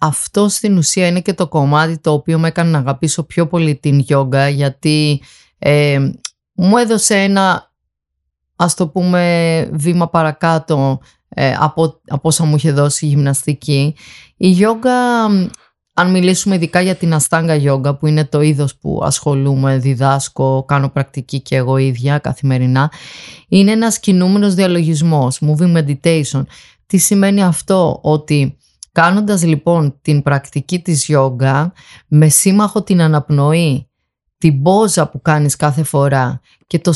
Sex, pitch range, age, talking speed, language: female, 140-180 Hz, 20-39, 140 wpm, Greek